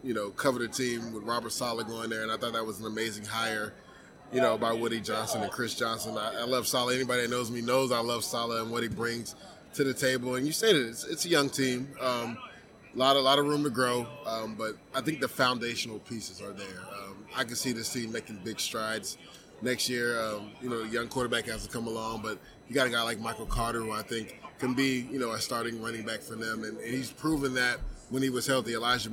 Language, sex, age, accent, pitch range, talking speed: English, male, 20-39, American, 115-130 Hz, 255 wpm